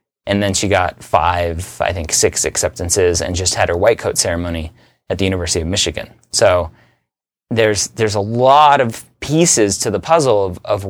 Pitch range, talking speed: 90-120 Hz, 180 wpm